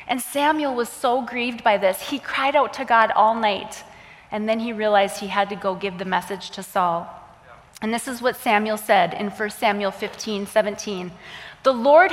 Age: 20-39